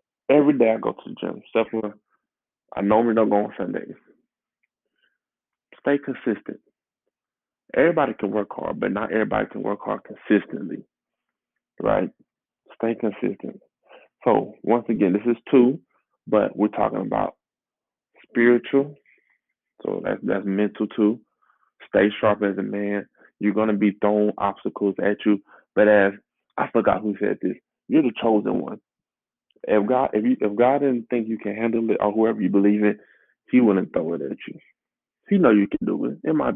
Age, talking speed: 20-39, 165 wpm